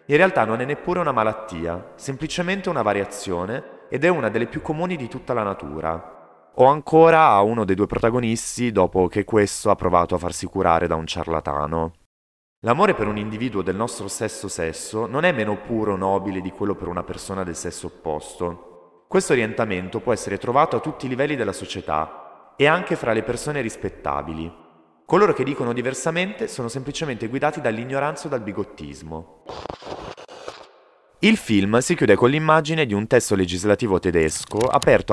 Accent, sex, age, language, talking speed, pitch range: native, male, 30-49, Italian, 170 wpm, 90-130 Hz